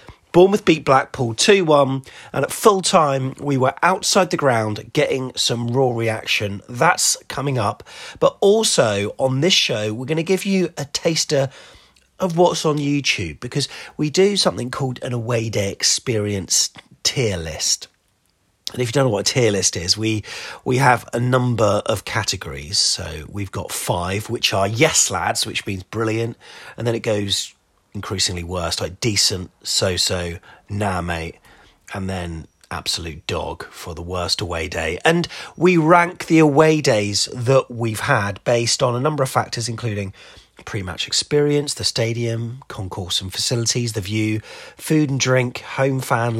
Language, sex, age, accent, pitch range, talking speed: English, male, 30-49, British, 100-145 Hz, 165 wpm